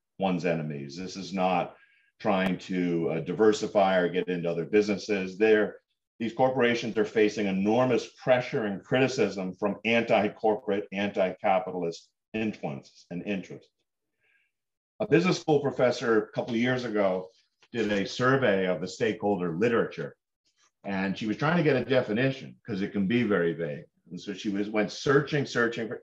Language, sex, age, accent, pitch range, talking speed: English, male, 50-69, American, 100-130 Hz, 150 wpm